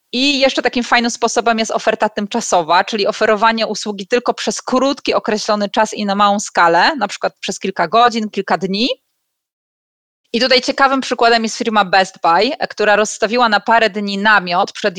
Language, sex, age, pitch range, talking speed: Polish, female, 30-49, 205-245 Hz, 170 wpm